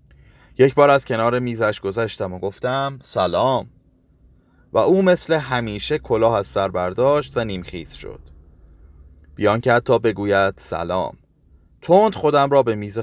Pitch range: 90-140 Hz